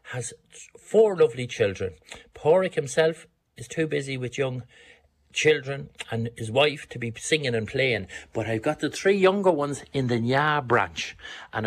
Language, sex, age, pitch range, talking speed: English, male, 60-79, 115-145 Hz, 165 wpm